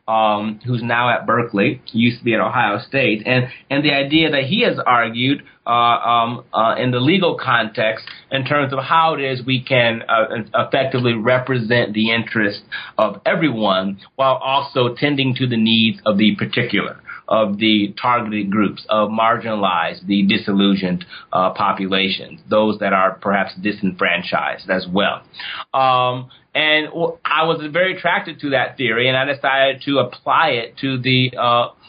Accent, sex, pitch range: American, male, 115-135 Hz